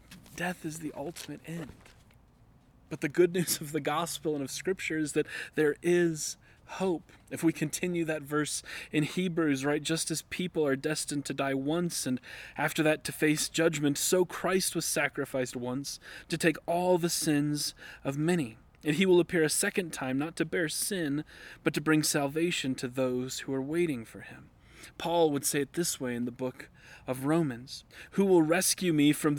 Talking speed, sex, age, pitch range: 185 wpm, male, 30-49, 140-165 Hz